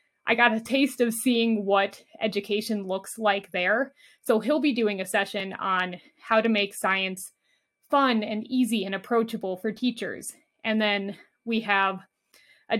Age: 20-39